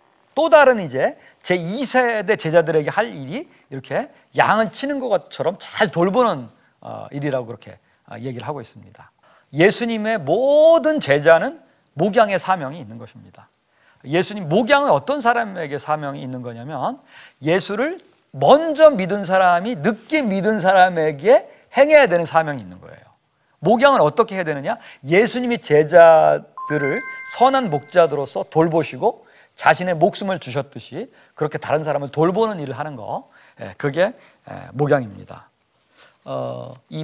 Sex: male